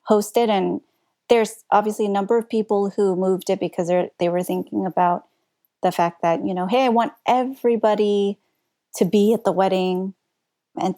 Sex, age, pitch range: female, 30-49, 180-210 Hz